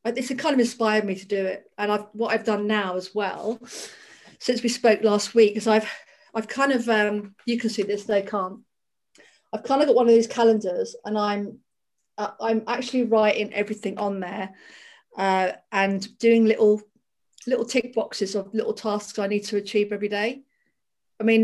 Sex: female